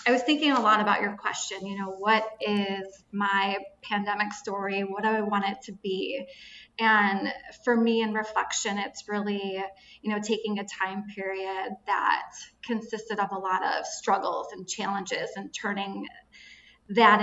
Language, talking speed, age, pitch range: English, 165 wpm, 20-39, 195-230 Hz